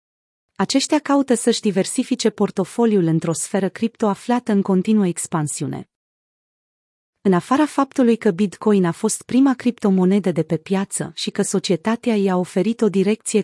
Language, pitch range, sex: Romanian, 180-235 Hz, female